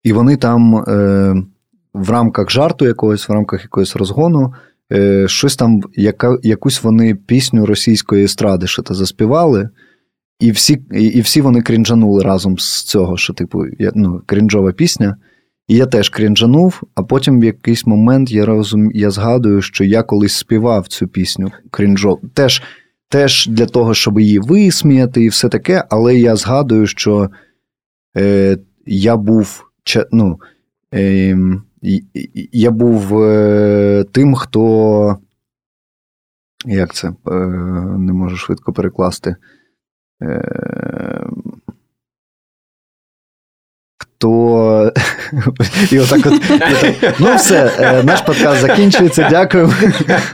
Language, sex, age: Ukrainian, male, 20-39